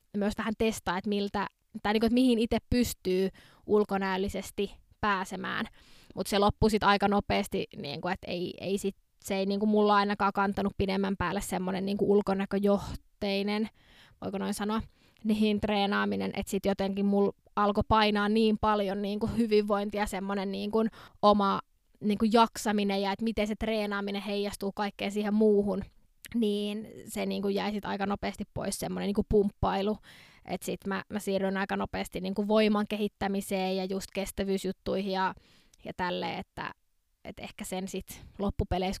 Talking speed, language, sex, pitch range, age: 145 wpm, Finnish, female, 195-215 Hz, 20-39